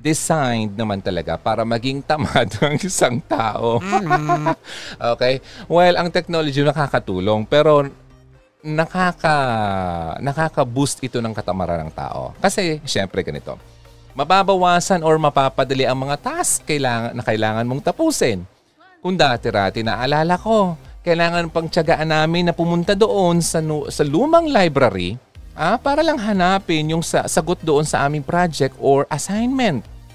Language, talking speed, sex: Filipino, 130 wpm, male